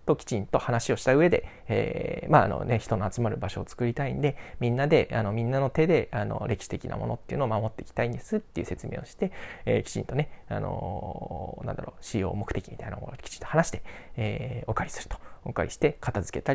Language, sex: Japanese, male